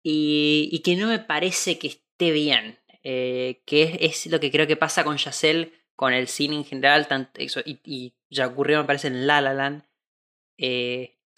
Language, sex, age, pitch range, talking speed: Spanish, female, 20-39, 140-180 Hz, 200 wpm